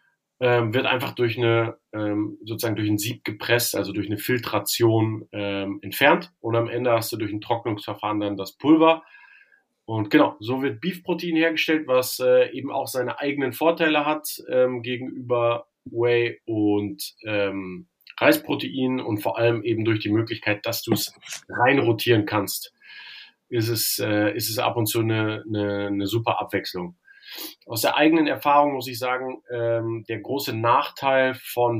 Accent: German